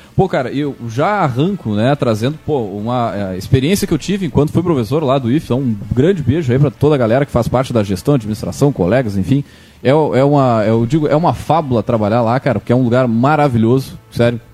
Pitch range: 115-155 Hz